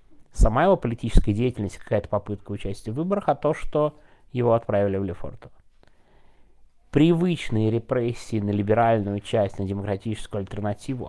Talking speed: 130 wpm